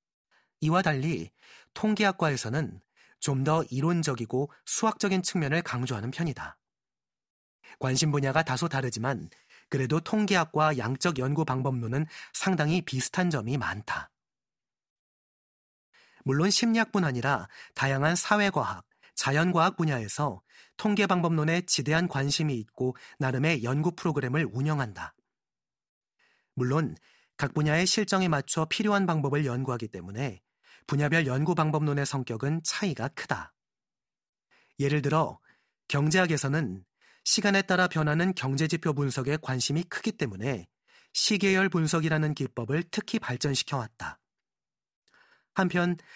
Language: Korean